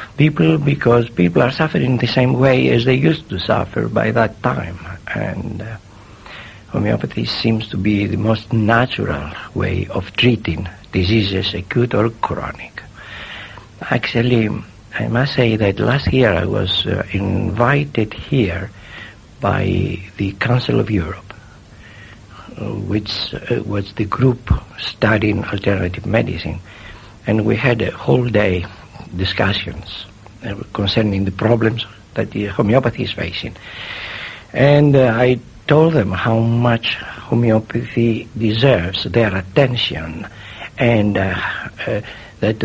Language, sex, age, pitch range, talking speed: English, male, 60-79, 100-120 Hz, 120 wpm